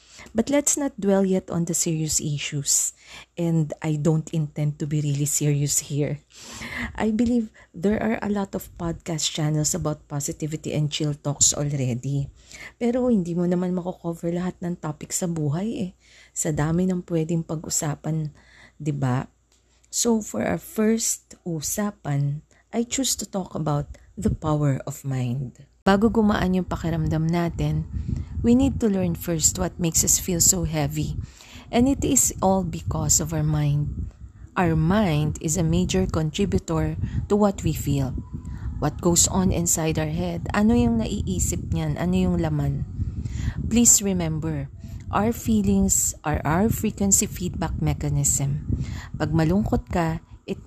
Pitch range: 145-190 Hz